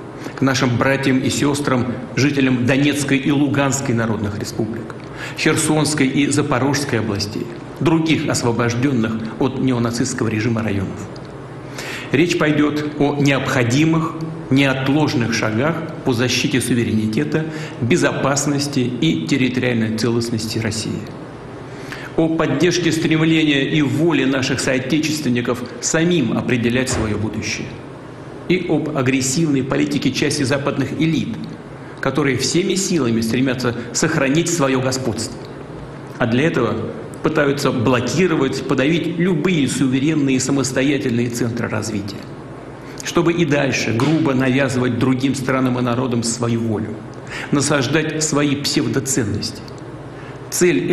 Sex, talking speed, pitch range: male, 100 wpm, 120-150 Hz